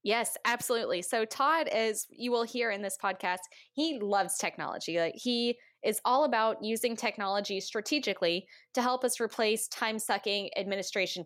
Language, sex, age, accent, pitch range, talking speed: English, female, 10-29, American, 185-230 Hz, 150 wpm